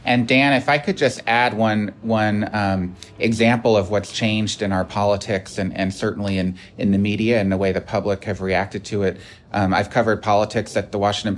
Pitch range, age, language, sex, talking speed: 100-115 Hz, 30-49, English, male, 210 wpm